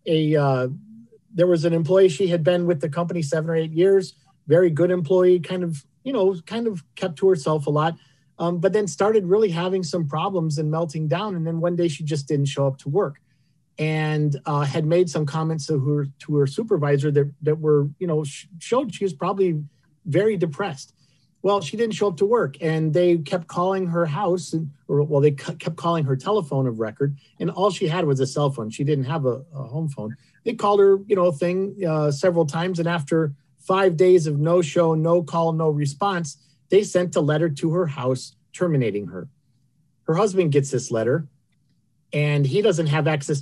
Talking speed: 210 wpm